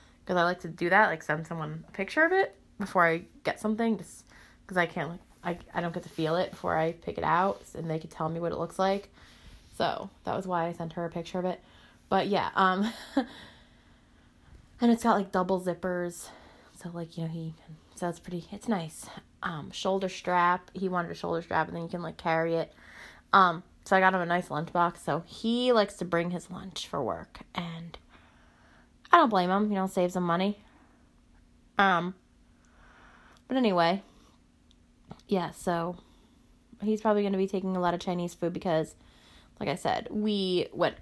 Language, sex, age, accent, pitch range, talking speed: English, female, 20-39, American, 170-195 Hz, 200 wpm